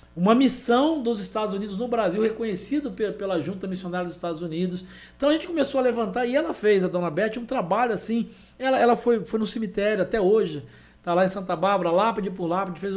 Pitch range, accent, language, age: 180-230 Hz, Brazilian, Spanish, 60-79